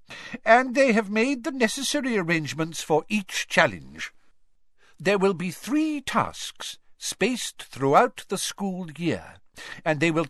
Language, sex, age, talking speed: English, male, 60-79, 135 wpm